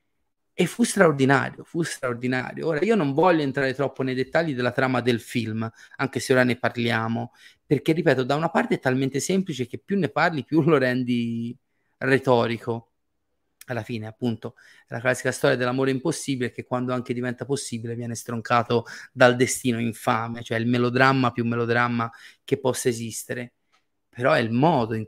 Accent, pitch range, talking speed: native, 120-150 Hz, 165 wpm